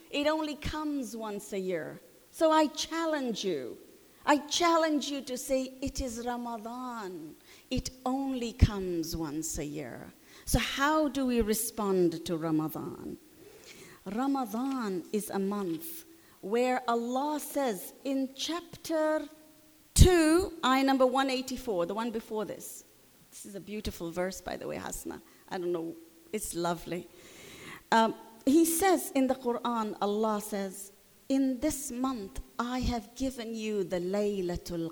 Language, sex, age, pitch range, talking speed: English, female, 40-59, 210-285 Hz, 135 wpm